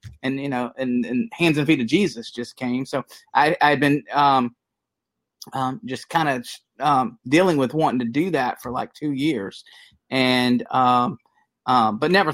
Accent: American